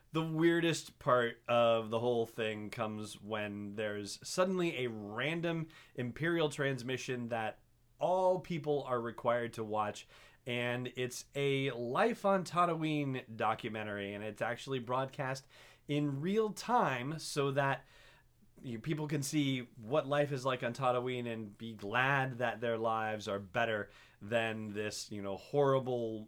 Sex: male